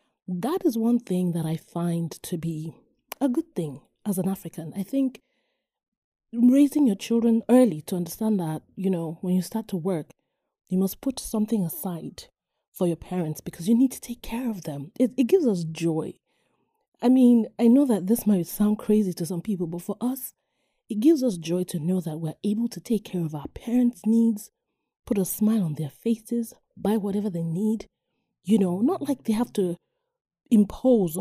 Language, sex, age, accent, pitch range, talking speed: English, female, 30-49, Nigerian, 175-235 Hz, 195 wpm